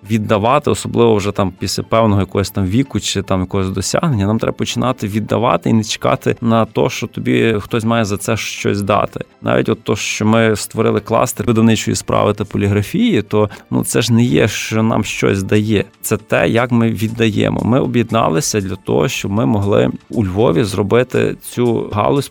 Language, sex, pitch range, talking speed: Ukrainian, male, 100-115 Hz, 185 wpm